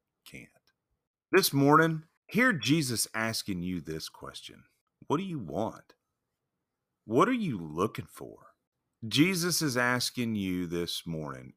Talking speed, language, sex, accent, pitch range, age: 125 wpm, English, male, American, 80-110 Hz, 40-59